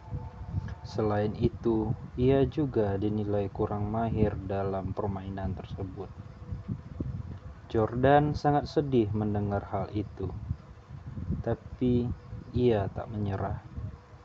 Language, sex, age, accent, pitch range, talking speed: Indonesian, male, 20-39, native, 100-120 Hz, 85 wpm